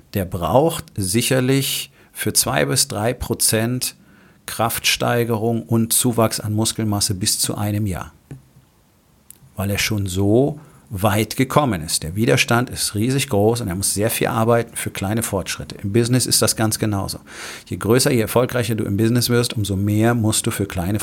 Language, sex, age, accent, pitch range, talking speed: German, male, 40-59, German, 100-125 Hz, 165 wpm